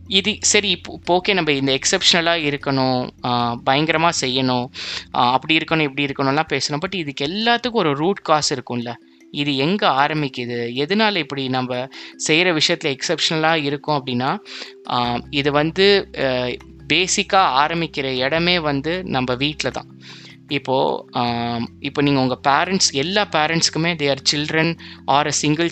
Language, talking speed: Tamil, 125 wpm